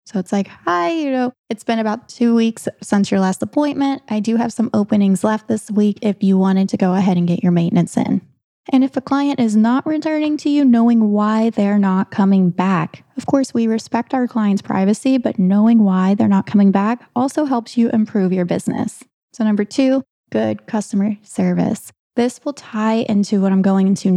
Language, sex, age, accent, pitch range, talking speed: English, female, 20-39, American, 195-240 Hz, 205 wpm